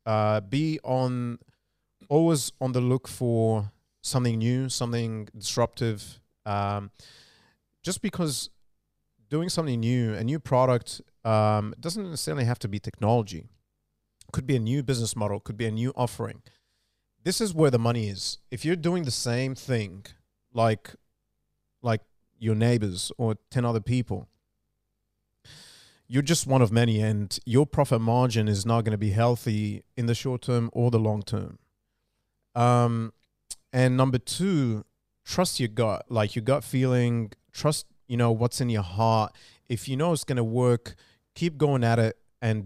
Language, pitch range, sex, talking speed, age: English, 110-130 Hz, male, 160 wpm, 30-49